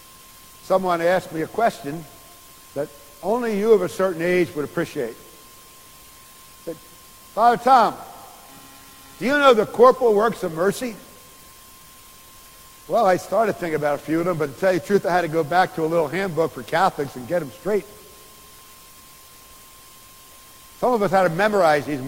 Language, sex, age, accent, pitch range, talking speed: English, male, 60-79, American, 165-210 Hz, 175 wpm